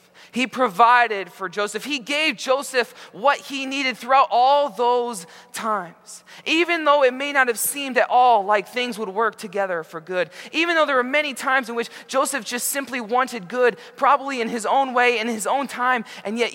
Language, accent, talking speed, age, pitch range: English, American, 195 wpm, 20-39, 190-250 Hz